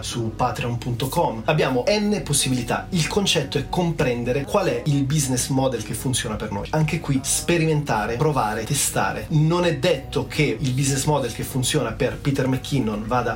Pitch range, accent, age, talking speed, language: 120-150 Hz, native, 30-49, 160 wpm, Italian